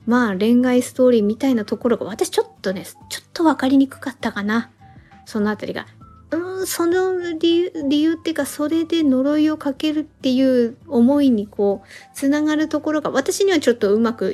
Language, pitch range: Japanese, 225-310 Hz